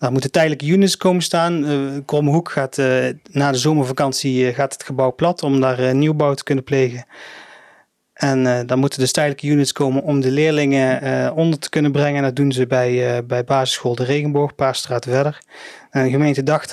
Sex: male